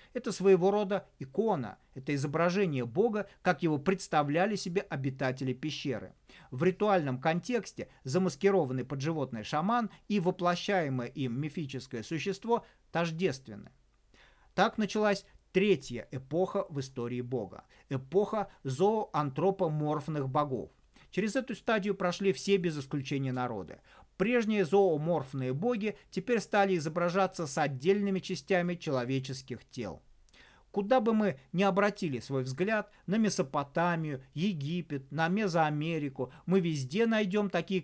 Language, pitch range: Russian, 145-200 Hz